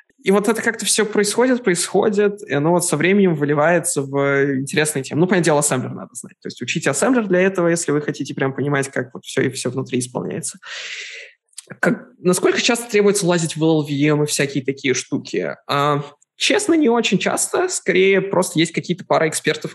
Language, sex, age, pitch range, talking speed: Russian, male, 20-39, 130-175 Hz, 185 wpm